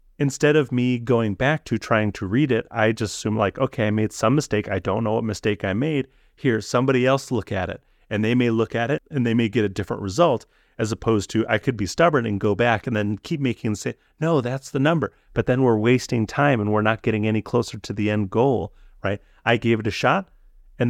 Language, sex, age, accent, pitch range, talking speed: English, male, 30-49, American, 105-125 Hz, 250 wpm